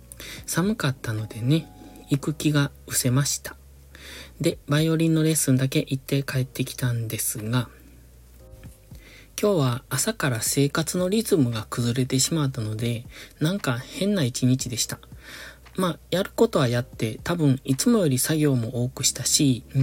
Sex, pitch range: male, 115-155 Hz